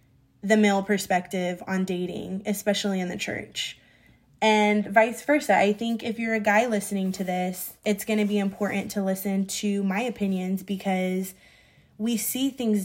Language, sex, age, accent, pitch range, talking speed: English, female, 20-39, American, 190-220 Hz, 165 wpm